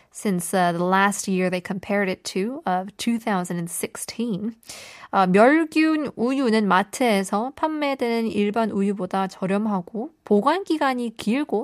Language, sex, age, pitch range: Korean, female, 20-39, 190-255 Hz